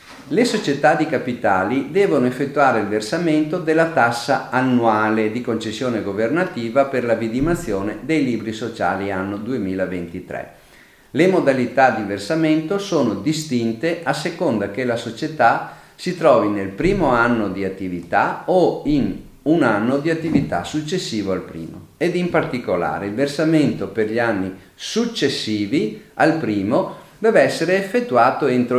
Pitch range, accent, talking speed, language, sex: 105-155 Hz, native, 135 wpm, Italian, male